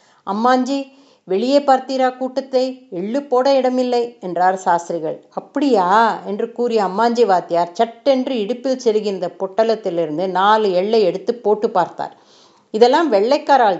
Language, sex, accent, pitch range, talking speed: Tamil, female, native, 195-265 Hz, 110 wpm